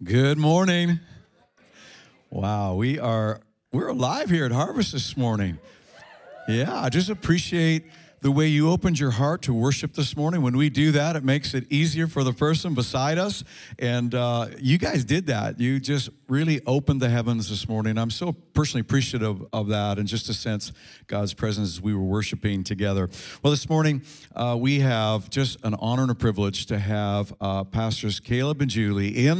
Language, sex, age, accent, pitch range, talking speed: English, male, 50-69, American, 110-150 Hz, 185 wpm